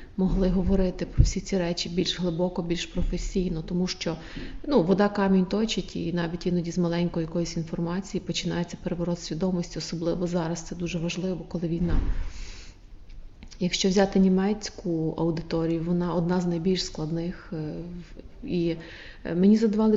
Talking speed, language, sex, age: 135 wpm, English, female, 30-49